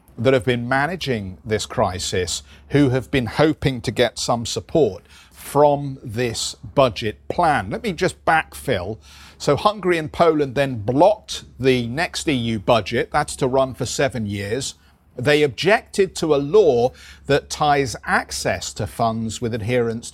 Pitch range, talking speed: 115-145 Hz, 150 wpm